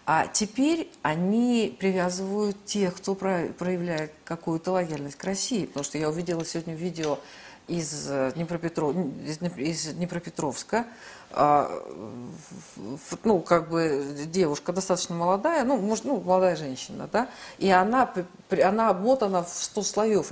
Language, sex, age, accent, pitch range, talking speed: Russian, female, 50-69, native, 155-210 Hz, 125 wpm